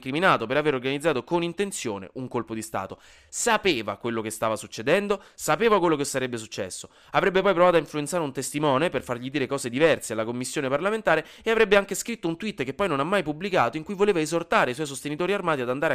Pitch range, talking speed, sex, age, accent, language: 125-195 Hz, 215 wpm, male, 20-39, native, Italian